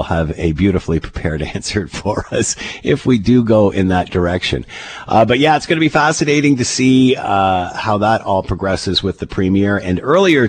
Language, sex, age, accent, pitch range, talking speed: English, male, 50-69, American, 85-100 Hz, 195 wpm